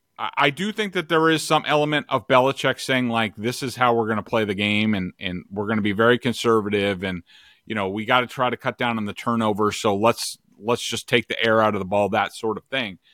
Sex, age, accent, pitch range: male, 40-59, American, 115-140 Hz